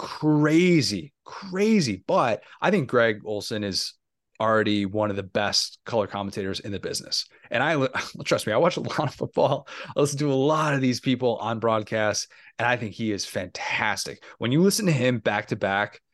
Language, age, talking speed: English, 30-49, 195 wpm